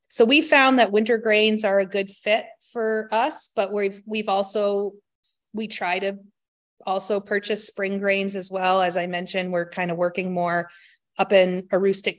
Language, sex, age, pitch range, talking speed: English, female, 30-49, 170-205 Hz, 175 wpm